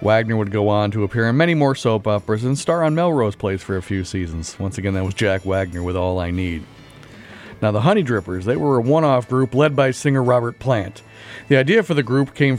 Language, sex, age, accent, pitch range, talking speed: English, male, 40-59, American, 105-140 Hz, 240 wpm